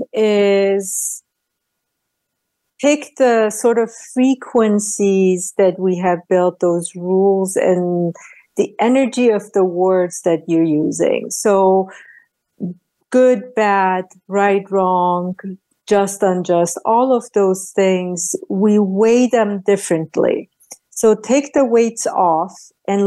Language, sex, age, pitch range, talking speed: English, female, 50-69, 185-220 Hz, 110 wpm